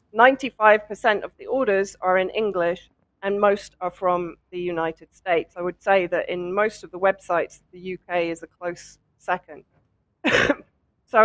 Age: 40-59